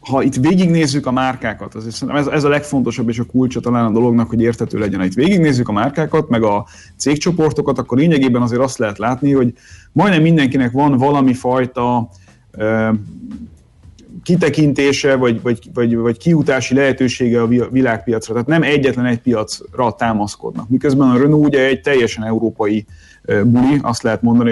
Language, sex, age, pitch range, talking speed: Hungarian, male, 30-49, 115-140 Hz, 160 wpm